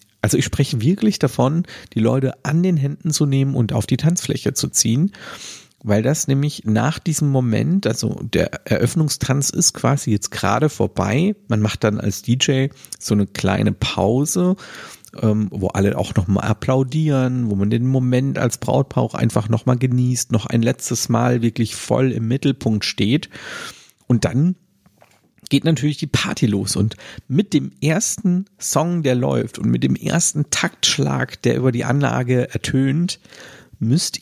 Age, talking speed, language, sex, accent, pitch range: 50-69, 155 wpm, German, male, German, 110-145 Hz